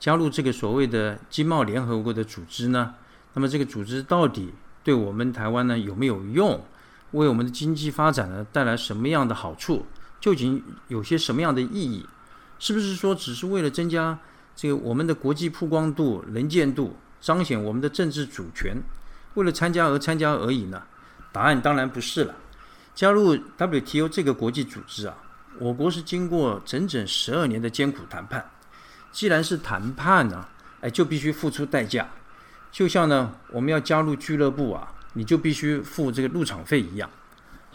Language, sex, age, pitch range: Chinese, male, 50-69, 120-160 Hz